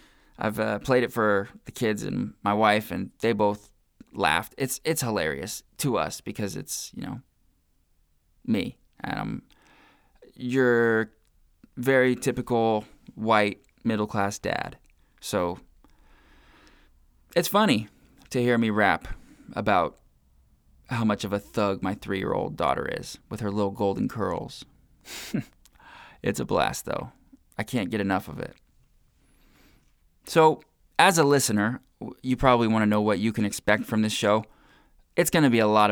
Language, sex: English, male